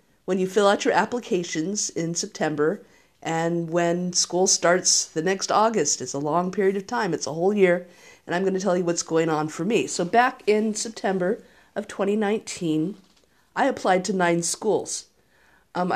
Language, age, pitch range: English, 50-69, 170-215 Hz